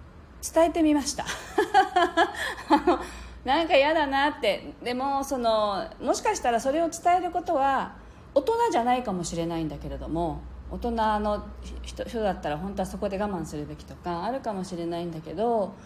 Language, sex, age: Japanese, female, 40-59